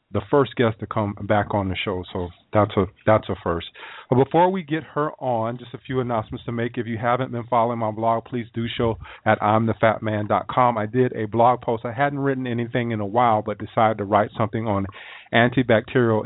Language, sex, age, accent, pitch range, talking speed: English, male, 40-59, American, 105-125 Hz, 215 wpm